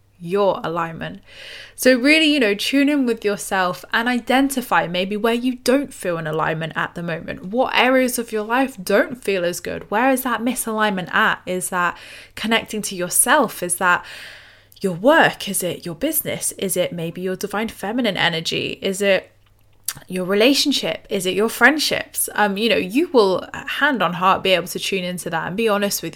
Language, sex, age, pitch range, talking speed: English, female, 10-29, 180-225 Hz, 190 wpm